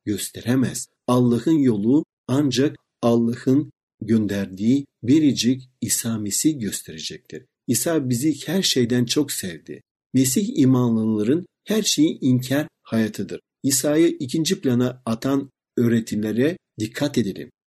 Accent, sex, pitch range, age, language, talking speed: native, male, 115-150 Hz, 60-79, Turkish, 95 wpm